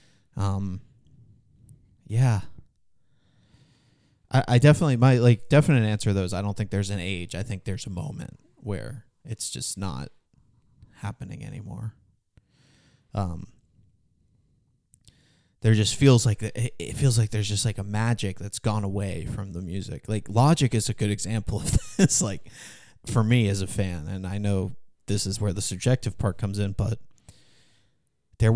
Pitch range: 100-125 Hz